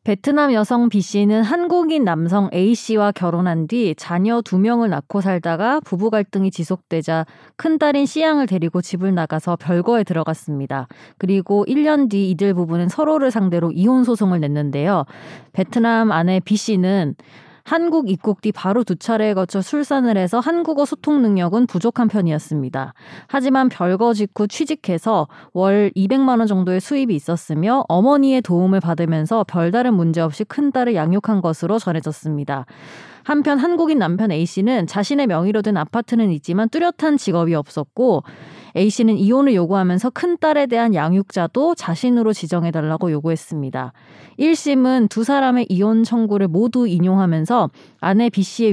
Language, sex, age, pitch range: Korean, female, 20-39, 175-250 Hz